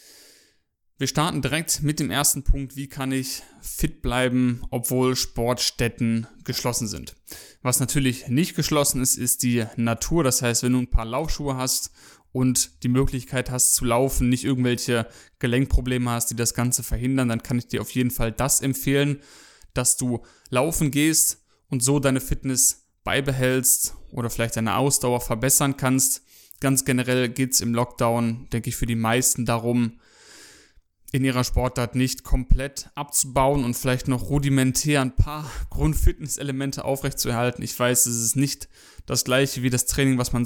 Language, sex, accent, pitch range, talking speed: German, male, German, 120-135 Hz, 160 wpm